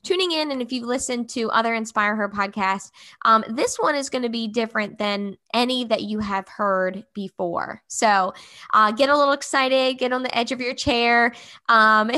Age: 10-29